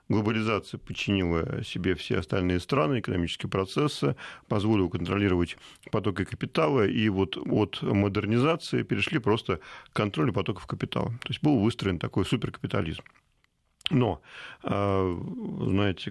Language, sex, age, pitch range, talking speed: Russian, male, 40-59, 95-120 Hz, 110 wpm